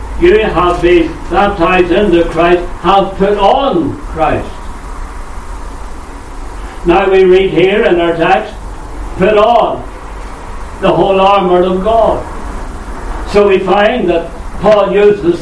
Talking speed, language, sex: 115 wpm, English, male